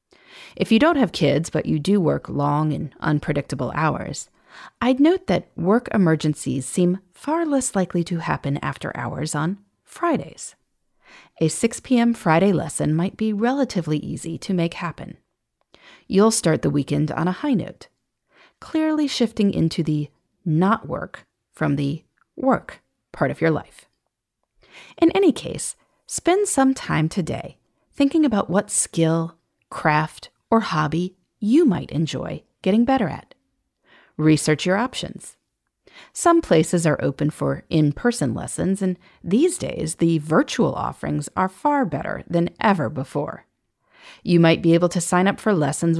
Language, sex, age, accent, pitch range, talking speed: English, female, 30-49, American, 155-245 Hz, 145 wpm